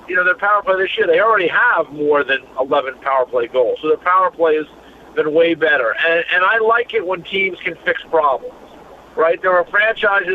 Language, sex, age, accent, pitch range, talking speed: English, male, 50-69, American, 155-205 Hz, 220 wpm